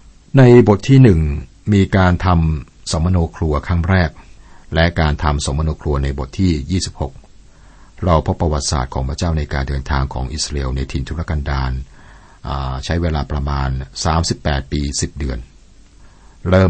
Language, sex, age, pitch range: Thai, male, 60-79, 75-95 Hz